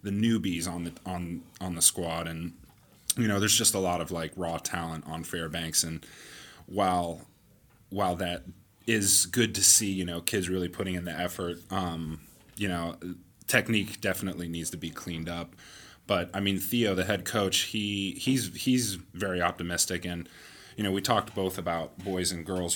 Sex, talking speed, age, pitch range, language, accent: male, 180 wpm, 30-49, 85-100 Hz, English, American